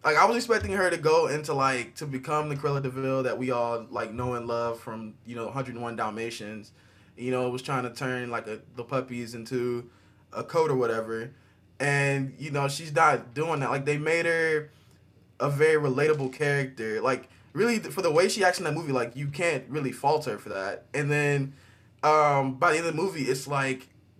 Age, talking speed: 20-39, 210 wpm